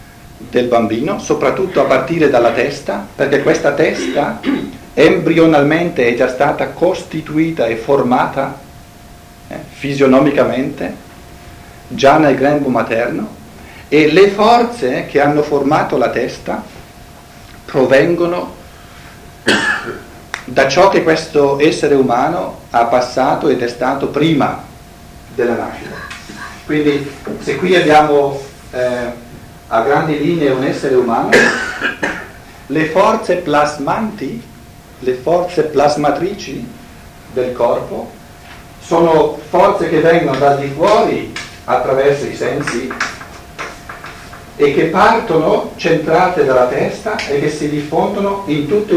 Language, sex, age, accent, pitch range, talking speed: Italian, male, 50-69, native, 135-170 Hz, 105 wpm